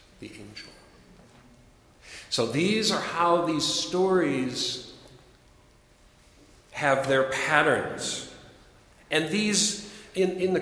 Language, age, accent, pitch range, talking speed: English, 50-69, American, 125-175 Hz, 85 wpm